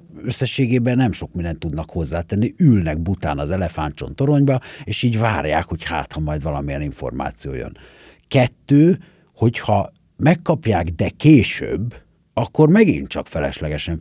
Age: 60-79